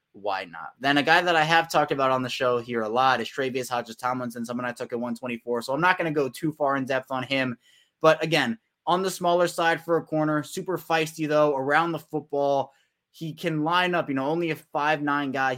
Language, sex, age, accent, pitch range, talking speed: English, male, 20-39, American, 130-155 Hz, 245 wpm